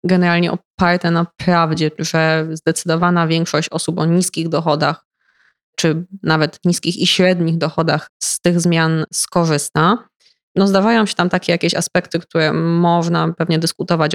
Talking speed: 135 wpm